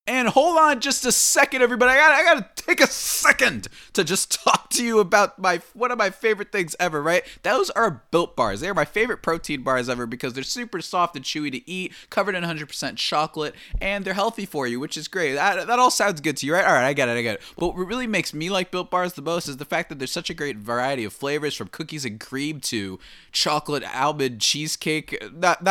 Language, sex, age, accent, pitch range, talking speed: English, male, 20-39, American, 140-190 Hz, 240 wpm